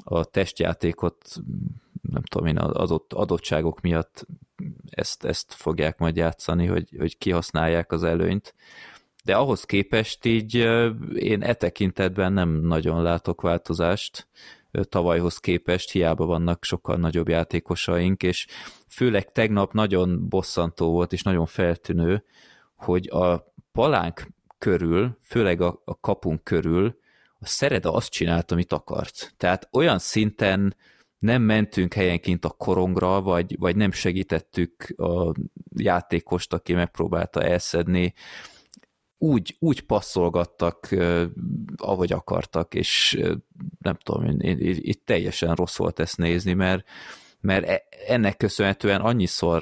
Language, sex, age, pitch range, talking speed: English, male, 20-39, 85-95 Hz, 120 wpm